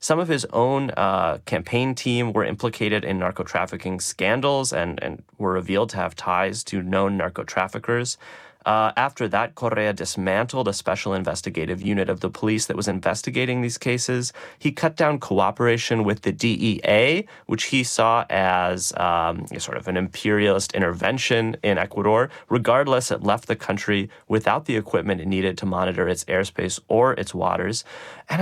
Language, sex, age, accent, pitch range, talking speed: English, male, 30-49, American, 95-125 Hz, 165 wpm